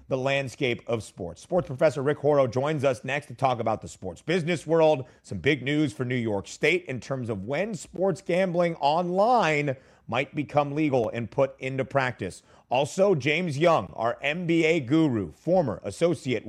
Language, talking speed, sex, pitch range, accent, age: English, 170 wpm, male, 125-170 Hz, American, 30-49